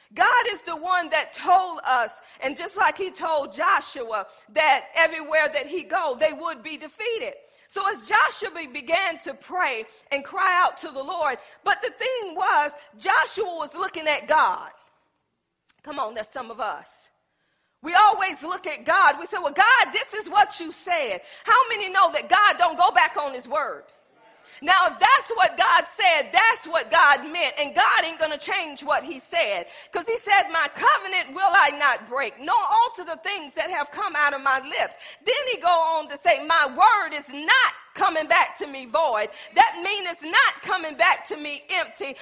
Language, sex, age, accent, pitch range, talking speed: English, female, 40-59, American, 310-405 Hz, 195 wpm